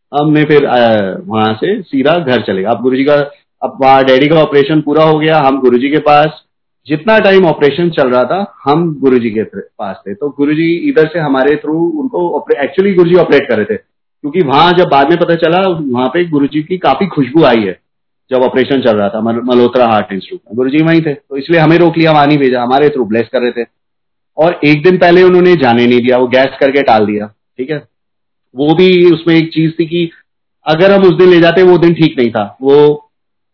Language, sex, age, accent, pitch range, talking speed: Hindi, male, 30-49, native, 125-170 Hz, 220 wpm